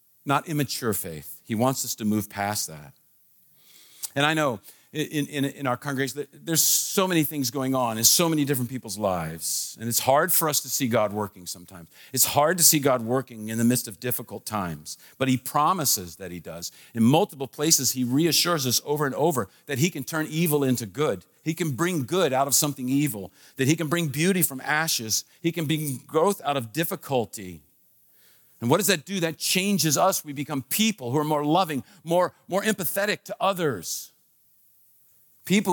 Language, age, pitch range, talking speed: English, 50-69, 105-155 Hz, 195 wpm